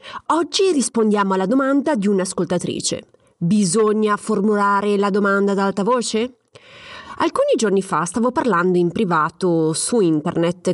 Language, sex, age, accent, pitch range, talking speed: Italian, female, 30-49, native, 180-260 Hz, 125 wpm